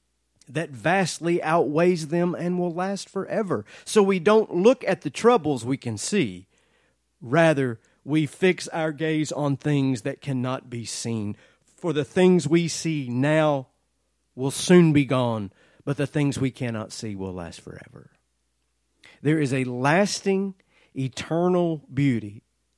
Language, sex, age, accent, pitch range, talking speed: English, male, 40-59, American, 110-180 Hz, 140 wpm